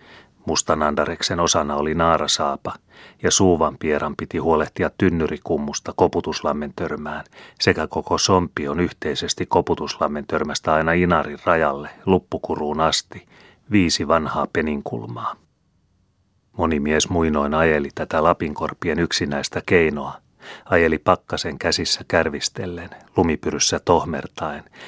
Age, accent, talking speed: 30-49, native, 95 wpm